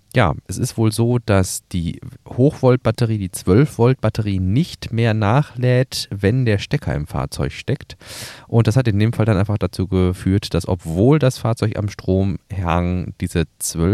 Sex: male